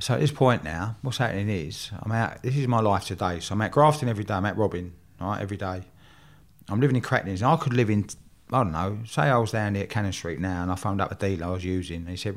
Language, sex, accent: English, male, British